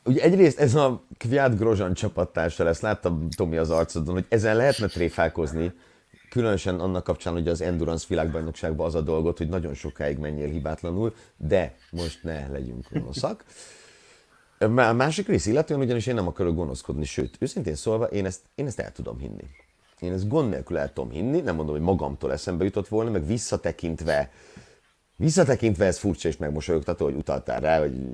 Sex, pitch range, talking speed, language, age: male, 80-115 Hz, 175 wpm, Hungarian, 30-49